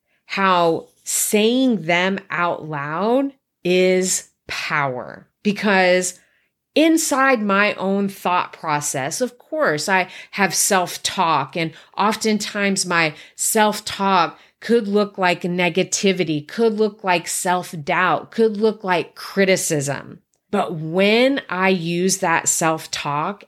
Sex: female